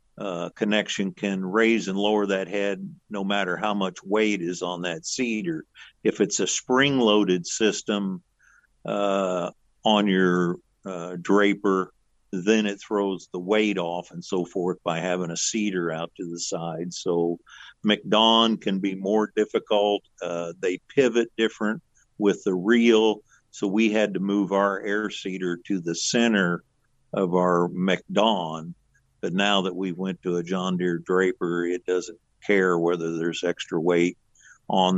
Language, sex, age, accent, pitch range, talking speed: English, male, 50-69, American, 90-110 Hz, 155 wpm